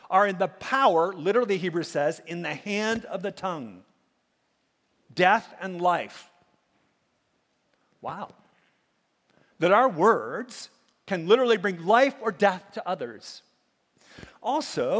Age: 50-69